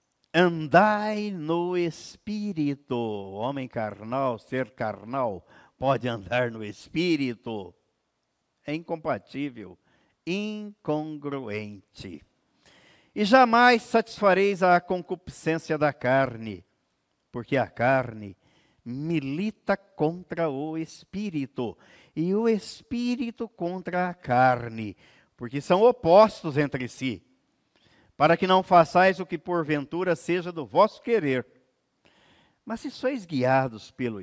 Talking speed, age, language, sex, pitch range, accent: 95 wpm, 50-69, Portuguese, male, 135-180 Hz, Brazilian